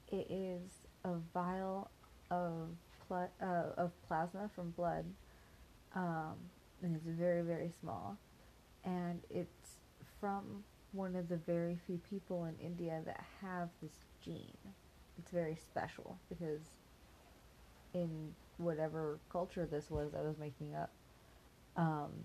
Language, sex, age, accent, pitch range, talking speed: English, female, 30-49, American, 155-185 Hz, 125 wpm